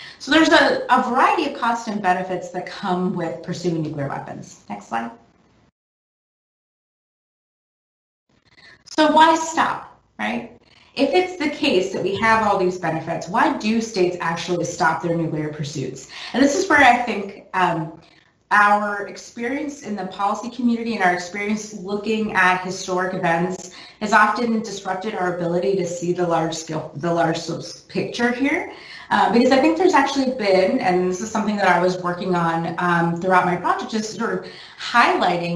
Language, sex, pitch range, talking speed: English, female, 170-230 Hz, 160 wpm